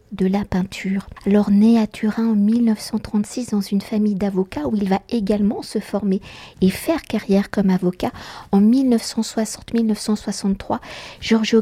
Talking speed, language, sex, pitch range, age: 140 wpm, French, female, 195-230 Hz, 50-69